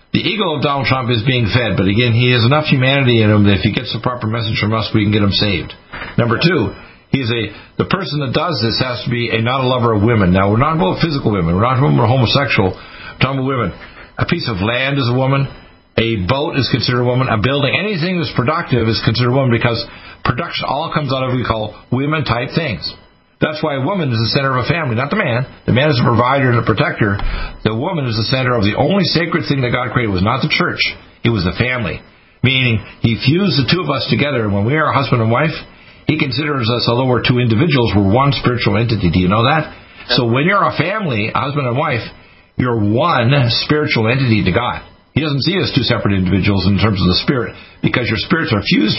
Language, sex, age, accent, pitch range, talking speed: English, male, 50-69, American, 110-140 Hz, 245 wpm